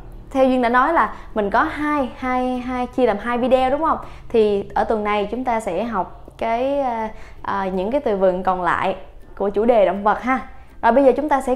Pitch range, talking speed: 200-265 Hz, 230 wpm